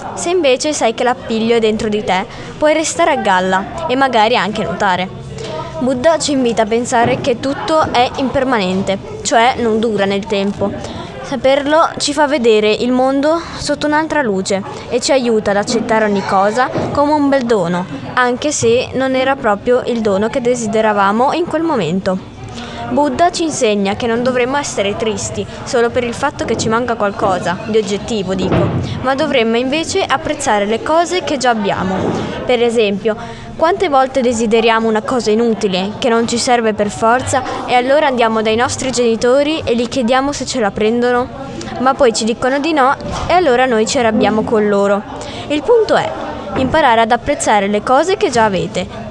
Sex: female